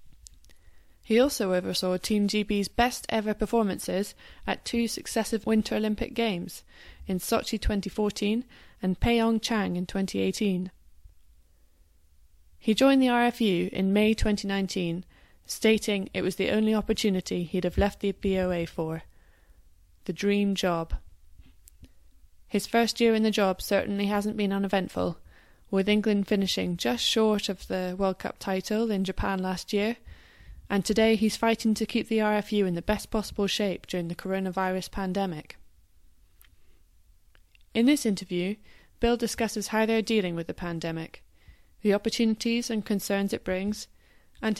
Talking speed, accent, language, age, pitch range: 135 wpm, British, English, 20-39, 150-220 Hz